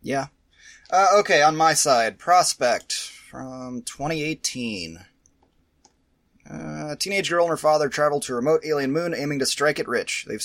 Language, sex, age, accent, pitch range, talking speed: English, male, 30-49, American, 135-170 Hz, 160 wpm